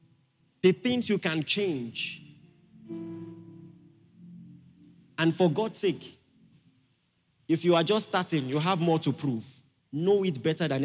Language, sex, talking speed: English, male, 125 wpm